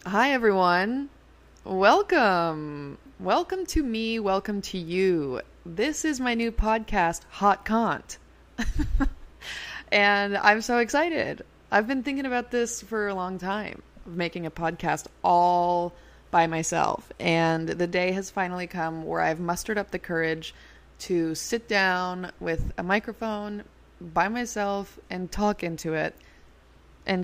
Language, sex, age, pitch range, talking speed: English, female, 20-39, 160-210 Hz, 130 wpm